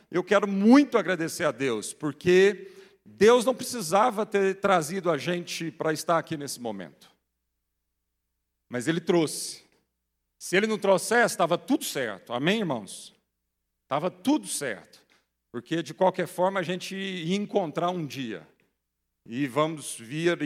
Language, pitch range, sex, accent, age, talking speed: Portuguese, 140-190 Hz, male, Brazilian, 50-69, 140 wpm